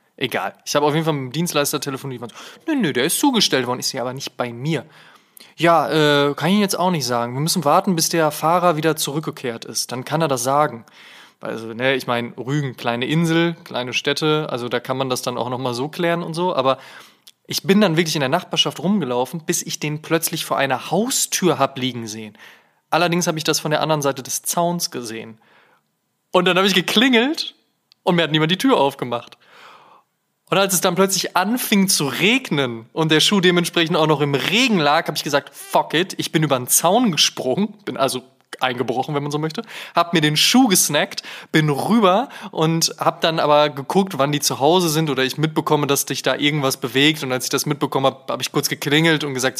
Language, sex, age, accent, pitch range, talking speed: German, male, 20-39, German, 135-170 Hz, 220 wpm